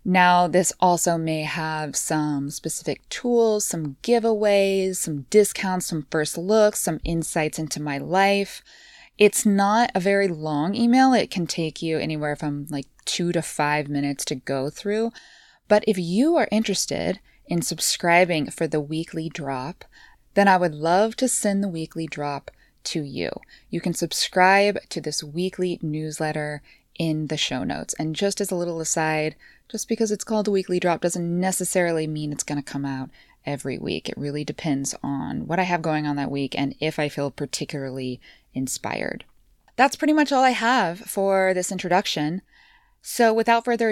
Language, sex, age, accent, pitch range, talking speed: English, female, 20-39, American, 145-200 Hz, 170 wpm